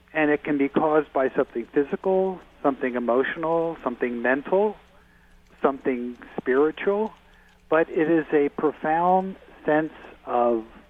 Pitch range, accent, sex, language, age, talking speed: 120-160 Hz, American, male, English, 50-69, 115 wpm